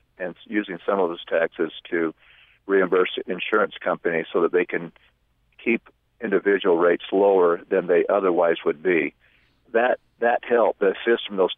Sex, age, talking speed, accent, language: male, 50-69, 155 wpm, American, English